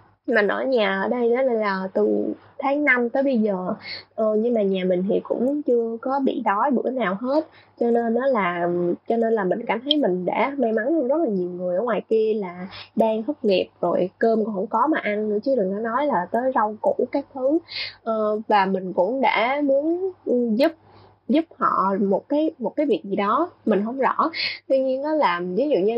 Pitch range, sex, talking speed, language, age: 195-270 Hz, female, 220 wpm, Vietnamese, 20-39